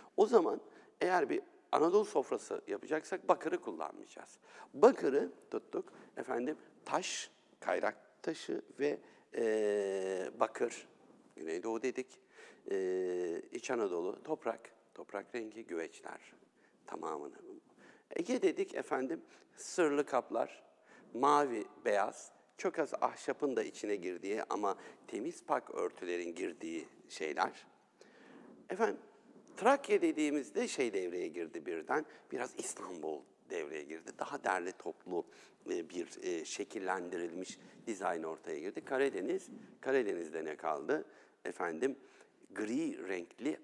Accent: native